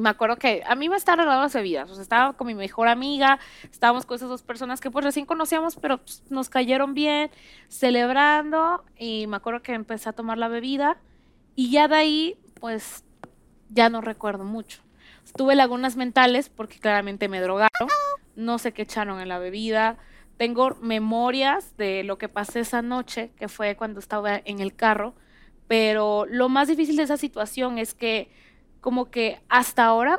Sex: female